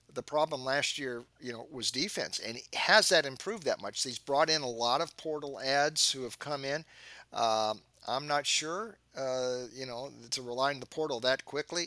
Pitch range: 125-150 Hz